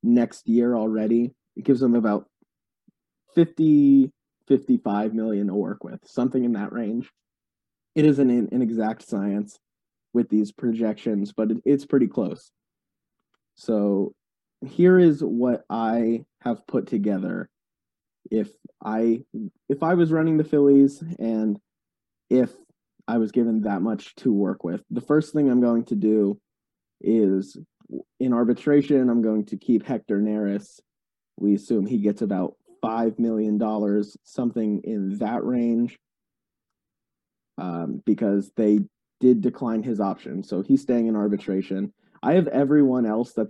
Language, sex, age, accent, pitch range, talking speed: English, male, 20-39, American, 105-130 Hz, 140 wpm